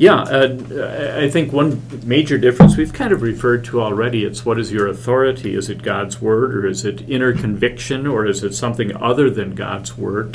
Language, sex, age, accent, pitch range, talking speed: English, male, 50-69, American, 110-125 Hz, 205 wpm